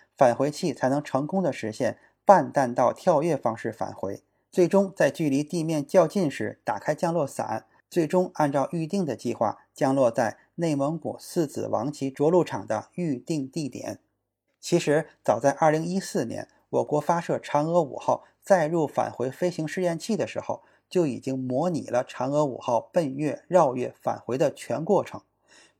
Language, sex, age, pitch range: Chinese, male, 20-39, 135-175 Hz